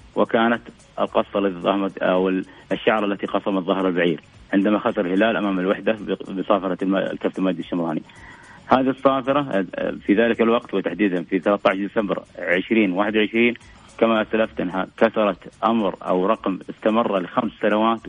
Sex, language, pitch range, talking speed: male, Arabic, 95-110 Hz, 125 wpm